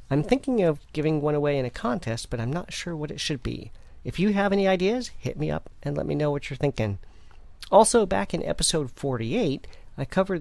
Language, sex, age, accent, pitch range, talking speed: English, male, 40-59, American, 120-160 Hz, 225 wpm